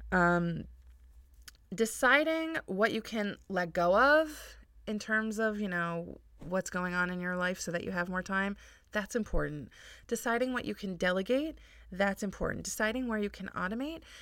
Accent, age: American, 20-39